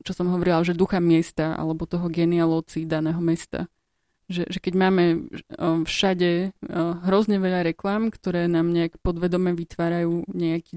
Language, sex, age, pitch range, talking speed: Slovak, female, 20-39, 170-185 Hz, 140 wpm